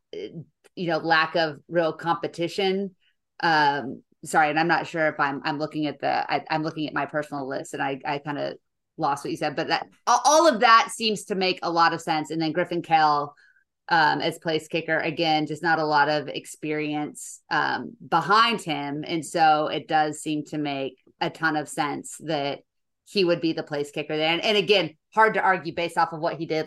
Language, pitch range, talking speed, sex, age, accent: English, 150-185 Hz, 215 wpm, female, 30-49, American